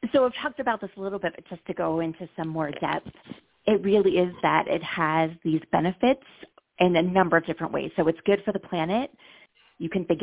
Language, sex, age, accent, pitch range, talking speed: English, female, 30-49, American, 155-180 Hz, 230 wpm